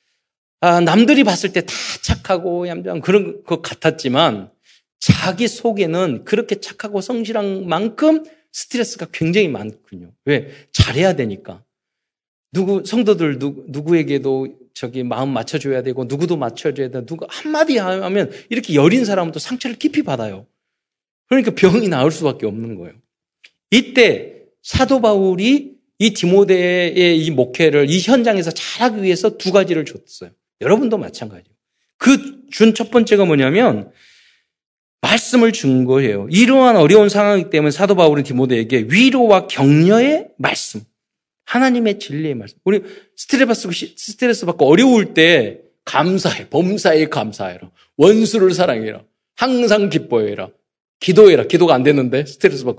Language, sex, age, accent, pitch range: Korean, male, 40-59, native, 140-225 Hz